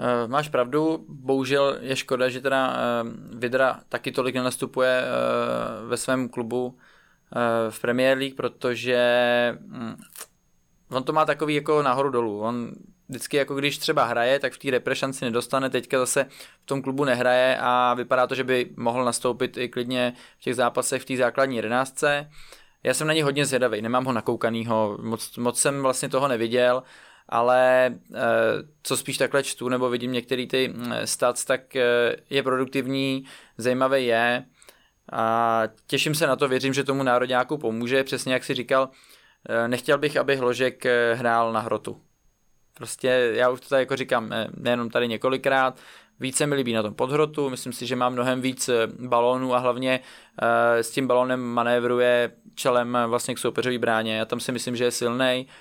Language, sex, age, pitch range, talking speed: Czech, male, 20-39, 120-135 Hz, 160 wpm